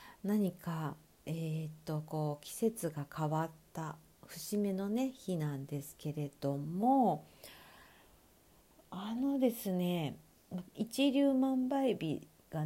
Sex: female